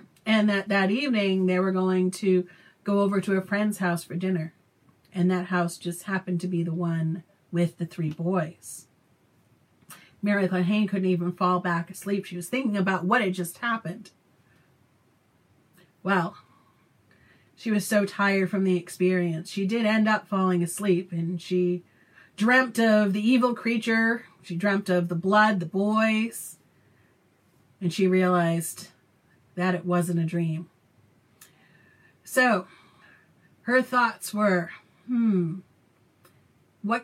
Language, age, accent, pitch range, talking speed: English, 40-59, American, 175-215 Hz, 140 wpm